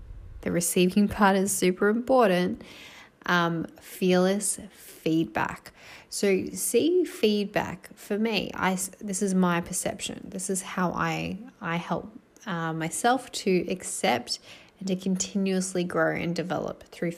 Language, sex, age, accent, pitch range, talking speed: English, female, 10-29, Australian, 170-205 Hz, 125 wpm